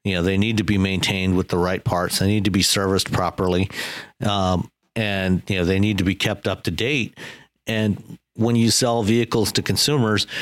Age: 50-69